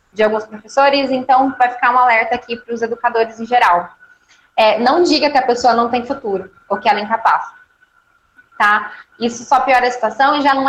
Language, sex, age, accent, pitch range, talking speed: Portuguese, female, 10-29, Brazilian, 225-310 Hz, 210 wpm